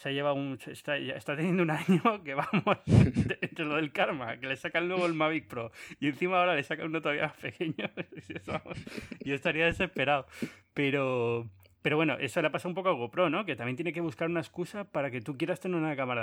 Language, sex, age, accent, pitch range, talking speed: Spanish, male, 30-49, Spanish, 130-170 Hz, 225 wpm